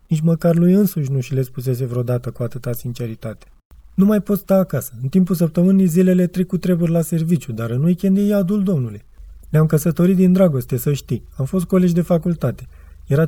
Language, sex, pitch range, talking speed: Romanian, male, 125-170 Hz, 205 wpm